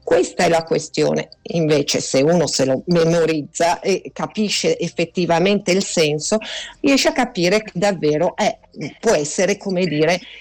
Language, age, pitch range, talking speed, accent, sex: Italian, 50-69, 165-215 Hz, 145 wpm, native, female